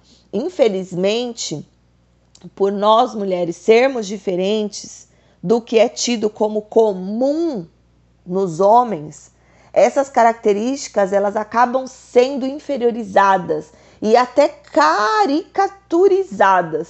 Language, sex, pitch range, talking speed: Portuguese, female, 195-255 Hz, 80 wpm